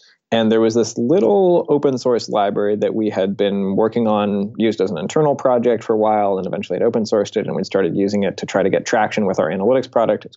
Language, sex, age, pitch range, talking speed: English, male, 20-39, 110-125 Hz, 235 wpm